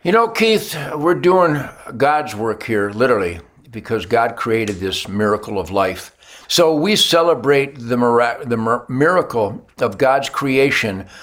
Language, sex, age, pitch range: English, male, 60-79, 120-165 Hz